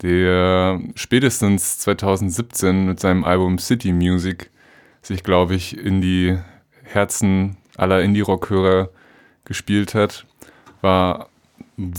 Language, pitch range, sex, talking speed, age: German, 90-105 Hz, male, 105 wpm, 20-39